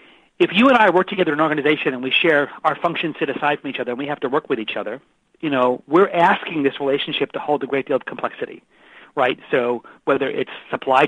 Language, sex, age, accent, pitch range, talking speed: English, male, 40-59, American, 135-180 Hz, 245 wpm